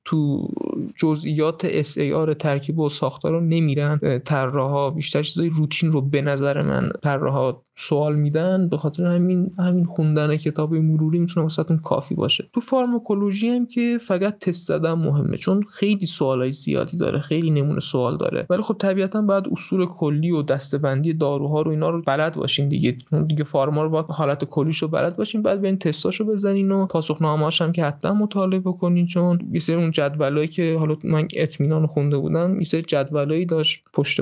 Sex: male